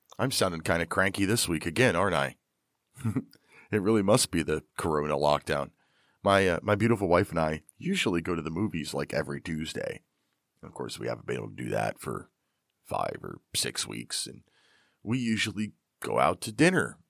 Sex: male